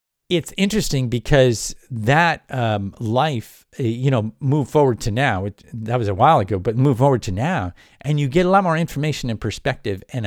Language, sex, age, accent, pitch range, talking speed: English, male, 50-69, American, 100-145 Hz, 185 wpm